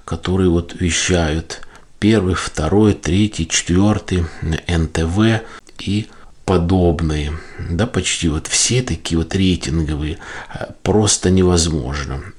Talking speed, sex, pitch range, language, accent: 90 wpm, male, 85-105 Hz, Russian, native